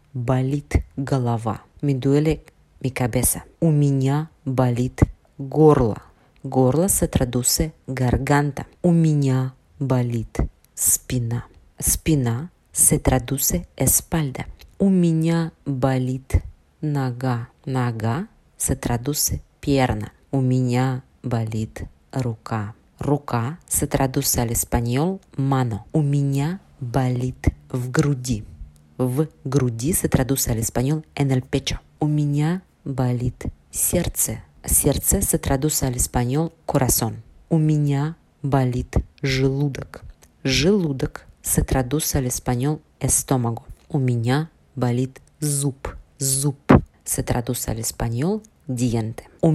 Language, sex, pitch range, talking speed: Spanish, female, 125-150 Hz, 85 wpm